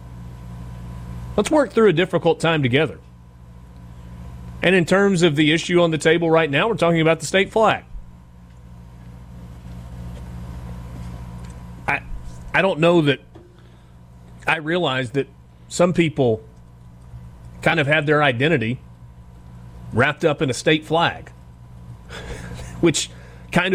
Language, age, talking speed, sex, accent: English, 40-59, 120 wpm, male, American